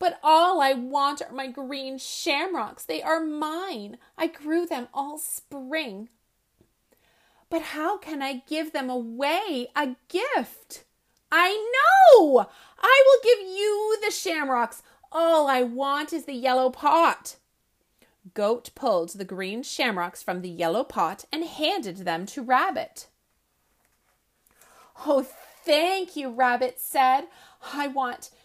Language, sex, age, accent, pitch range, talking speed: English, female, 30-49, American, 245-330 Hz, 130 wpm